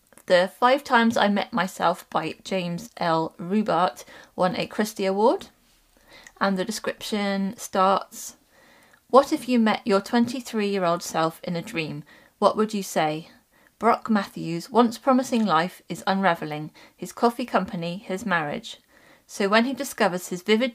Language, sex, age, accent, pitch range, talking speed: English, female, 30-49, British, 180-230 Hz, 140 wpm